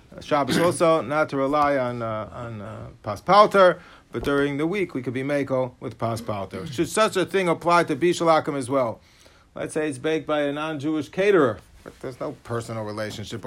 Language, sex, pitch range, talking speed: English, male, 135-175 Hz, 195 wpm